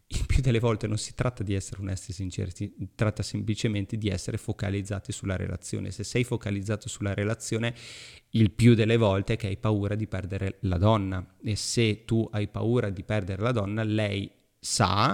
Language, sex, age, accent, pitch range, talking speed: Italian, male, 30-49, native, 105-135 Hz, 190 wpm